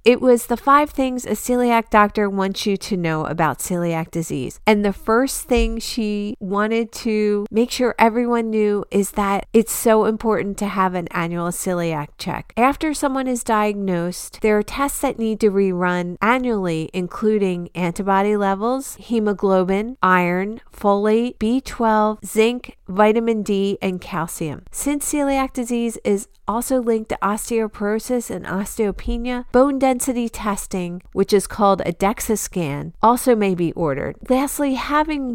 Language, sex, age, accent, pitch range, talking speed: English, female, 40-59, American, 185-240 Hz, 145 wpm